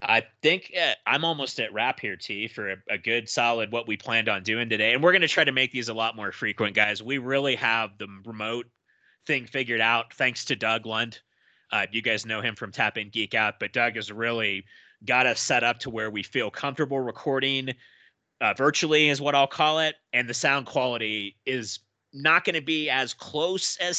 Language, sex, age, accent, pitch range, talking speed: English, male, 30-49, American, 110-140 Hz, 220 wpm